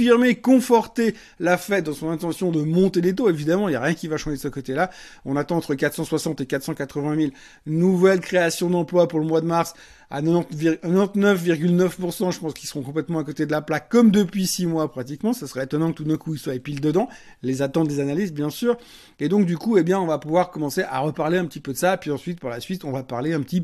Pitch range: 155-200 Hz